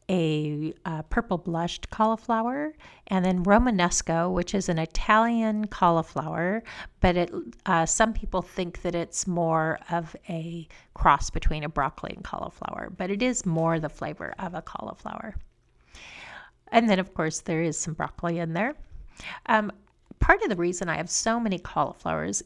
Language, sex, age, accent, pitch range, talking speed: English, female, 40-59, American, 170-210 Hz, 155 wpm